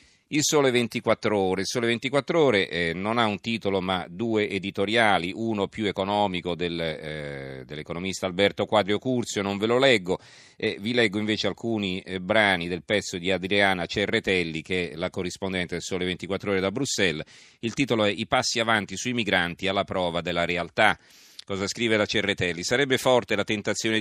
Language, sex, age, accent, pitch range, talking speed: Italian, male, 40-59, native, 85-105 Hz, 175 wpm